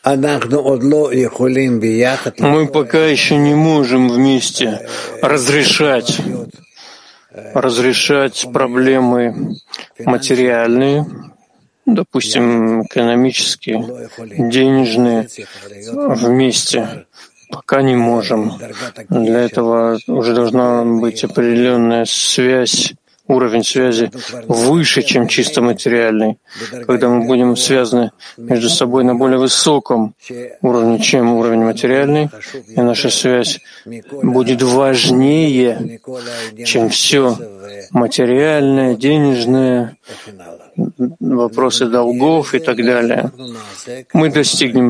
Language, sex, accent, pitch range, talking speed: Russian, male, native, 120-135 Hz, 80 wpm